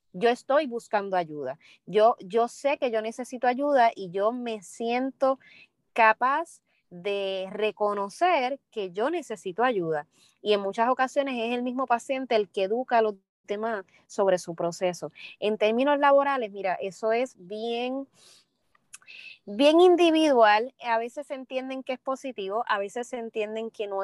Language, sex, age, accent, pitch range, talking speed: Spanish, female, 20-39, American, 185-240 Hz, 150 wpm